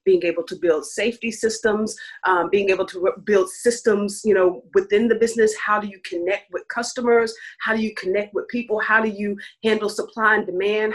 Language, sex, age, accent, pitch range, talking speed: English, female, 30-49, American, 170-220 Hz, 205 wpm